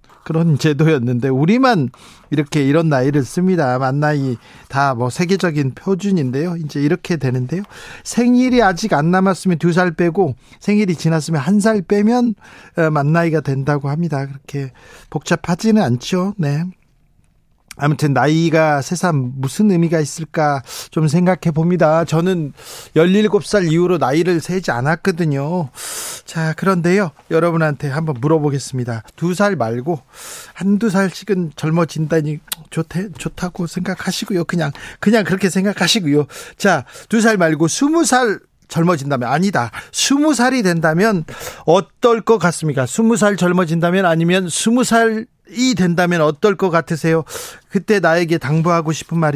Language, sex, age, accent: Korean, male, 40-59, native